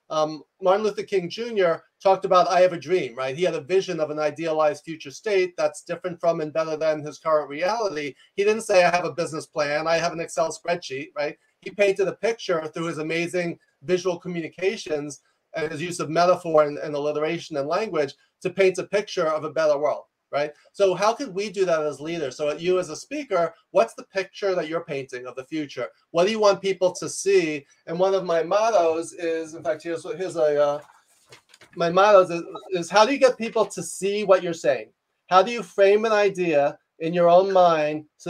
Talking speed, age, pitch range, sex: 215 wpm, 30-49, 155-190 Hz, male